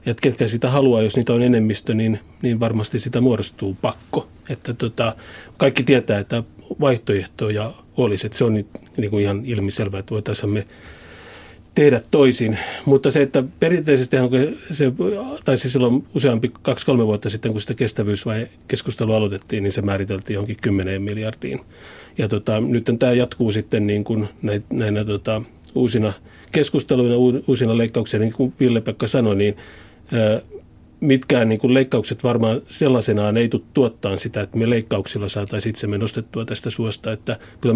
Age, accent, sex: 30-49, native, male